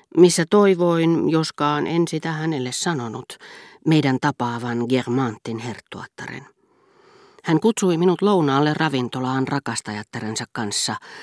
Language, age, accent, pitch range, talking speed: Finnish, 40-59, native, 120-160 Hz, 95 wpm